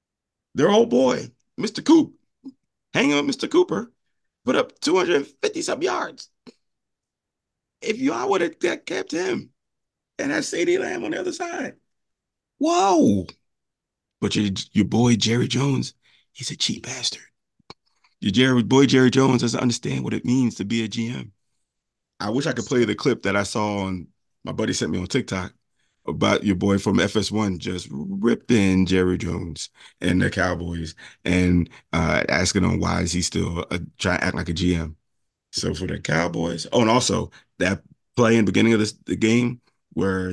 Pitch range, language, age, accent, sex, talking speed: 95-130 Hz, English, 30-49, American, male, 170 wpm